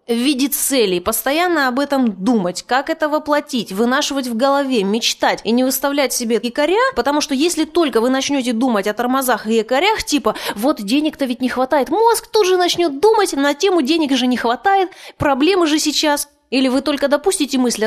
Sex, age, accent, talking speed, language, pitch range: female, 20-39, native, 185 wpm, Russian, 235-300 Hz